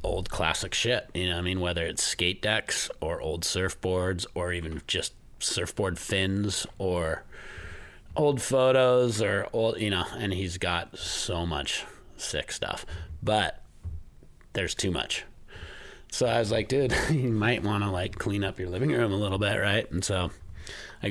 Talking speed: 170 wpm